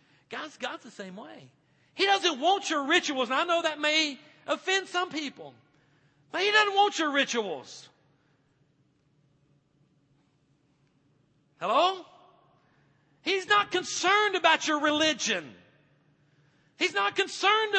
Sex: male